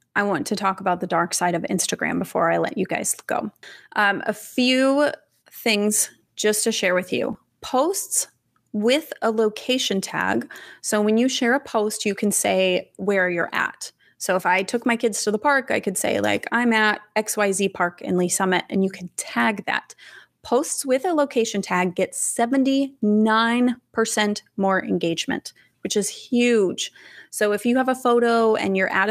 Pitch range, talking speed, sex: 190-235 Hz, 180 wpm, female